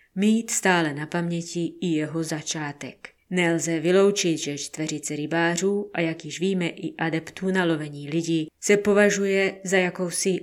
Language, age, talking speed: Czech, 20-39, 145 wpm